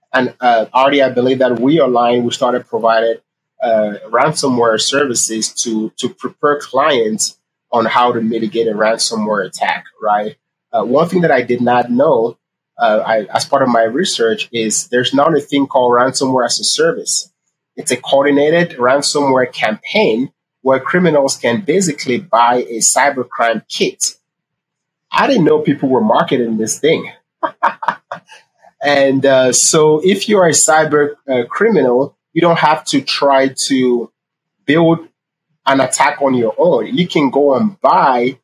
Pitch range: 120-150 Hz